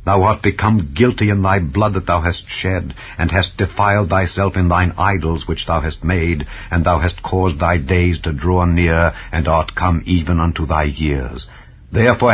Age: 60-79